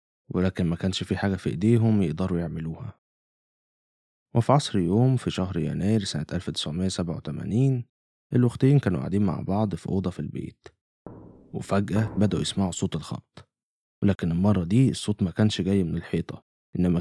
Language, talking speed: Arabic, 145 wpm